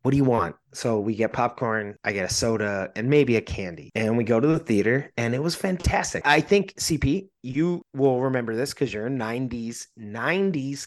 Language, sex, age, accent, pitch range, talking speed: English, male, 30-49, American, 115-155 Hz, 210 wpm